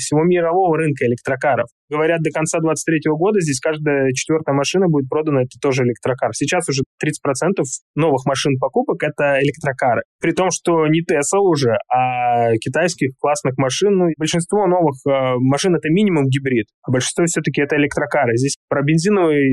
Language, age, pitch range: Russian, 20-39, 130-165 Hz